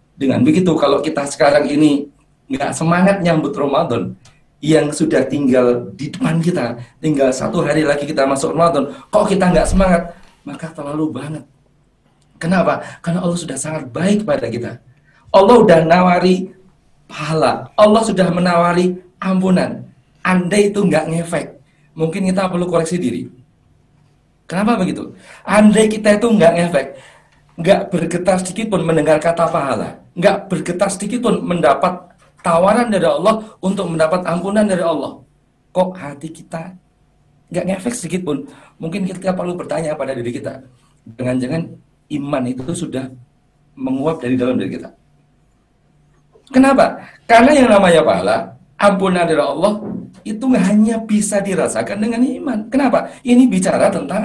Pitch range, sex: 145-200 Hz, male